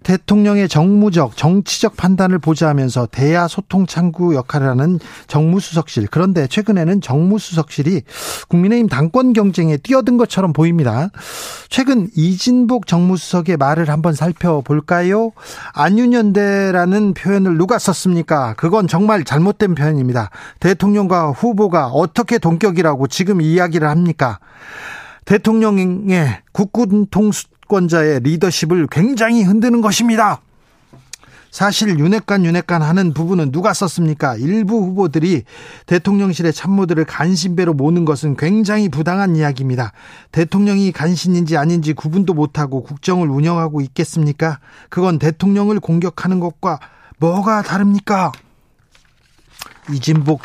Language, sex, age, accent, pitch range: Korean, male, 40-59, native, 155-200 Hz